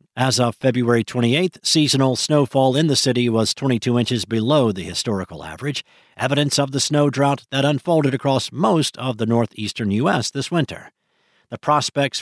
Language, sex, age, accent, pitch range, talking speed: English, male, 50-69, American, 115-155 Hz, 160 wpm